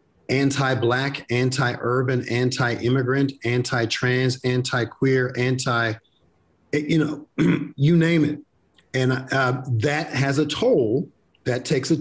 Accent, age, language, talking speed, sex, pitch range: American, 40-59, English, 100 wpm, male, 120-145 Hz